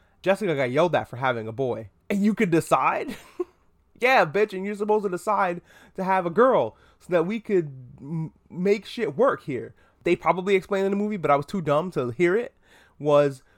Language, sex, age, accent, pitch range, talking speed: English, male, 20-39, American, 130-180 Hz, 210 wpm